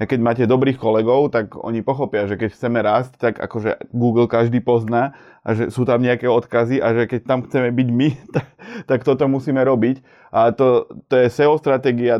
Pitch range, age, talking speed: 115-135 Hz, 20-39, 200 wpm